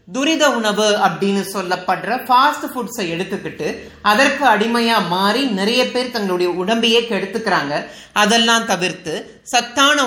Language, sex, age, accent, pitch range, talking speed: Tamil, male, 30-49, native, 195-250 Hz, 70 wpm